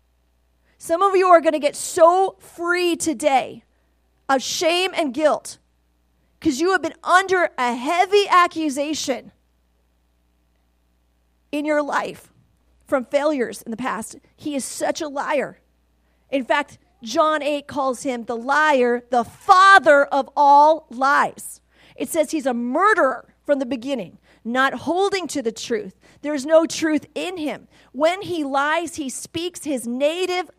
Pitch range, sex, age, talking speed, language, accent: 250-345 Hz, female, 40-59, 145 wpm, English, American